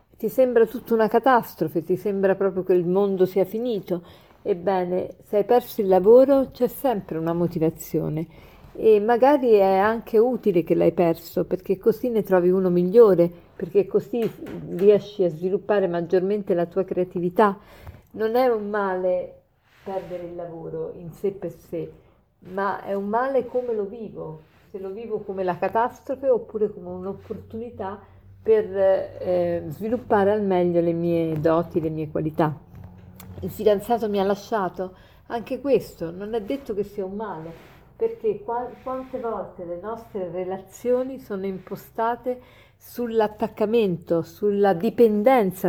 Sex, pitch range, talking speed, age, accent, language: female, 180-225 Hz, 145 wpm, 50-69, native, Italian